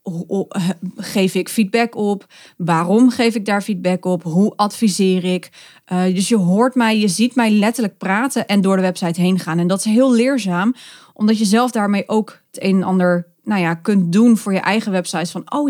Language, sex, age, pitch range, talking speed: Dutch, female, 30-49, 185-230 Hz, 205 wpm